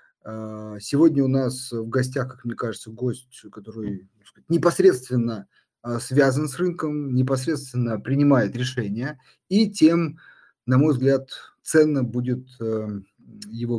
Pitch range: 115-150 Hz